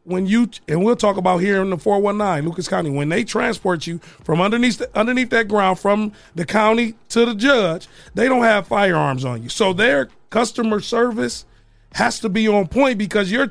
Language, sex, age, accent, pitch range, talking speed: English, male, 30-49, American, 170-225 Hz, 200 wpm